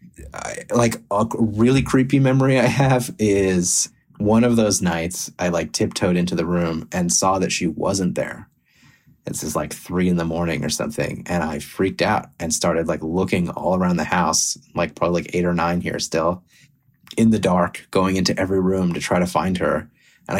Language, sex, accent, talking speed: English, male, American, 195 wpm